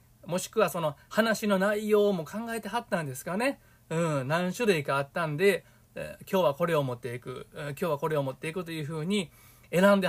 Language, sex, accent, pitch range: Japanese, male, native, 135-200 Hz